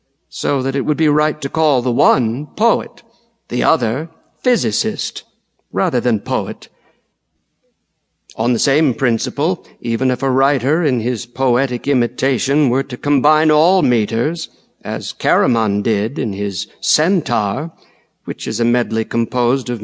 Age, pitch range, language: 60-79, 120-155 Hz, English